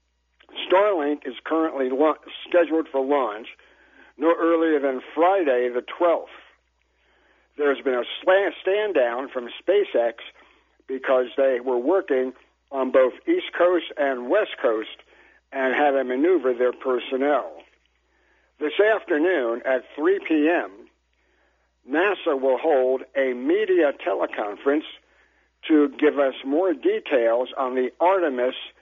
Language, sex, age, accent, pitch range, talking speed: English, male, 60-79, American, 125-165 Hz, 115 wpm